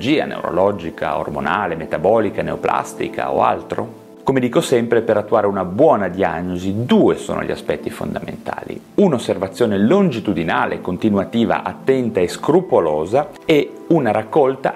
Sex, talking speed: male, 115 wpm